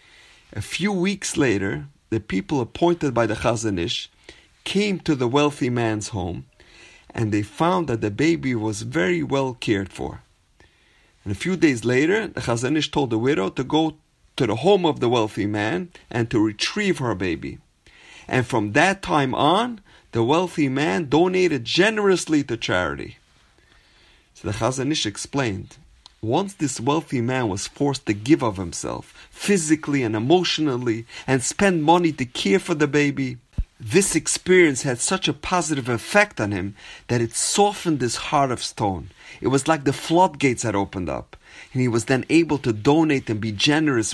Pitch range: 110-160 Hz